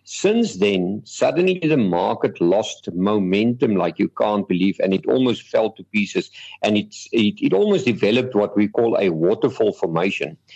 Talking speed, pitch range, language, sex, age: 165 wpm, 105-140 Hz, English, male, 50-69